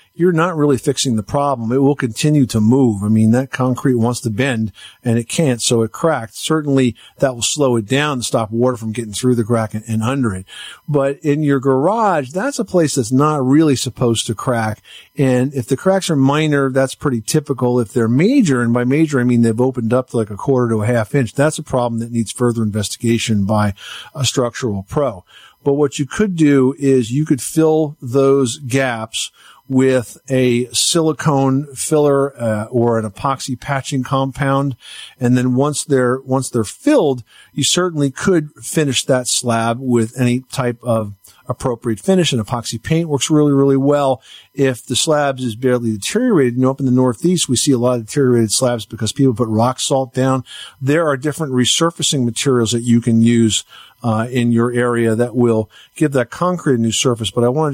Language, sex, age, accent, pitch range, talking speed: English, male, 50-69, American, 120-140 Hz, 195 wpm